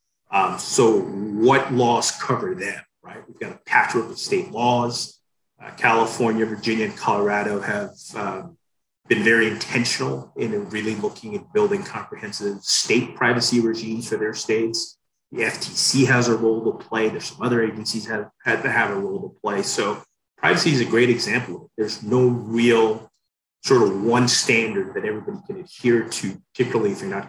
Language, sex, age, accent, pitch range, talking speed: English, male, 30-49, American, 110-130 Hz, 170 wpm